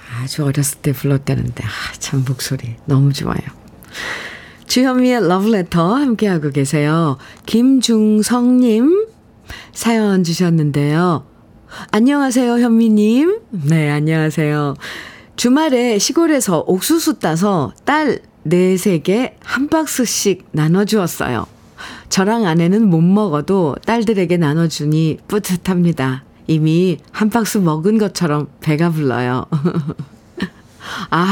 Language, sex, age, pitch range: Korean, female, 40-59, 150-210 Hz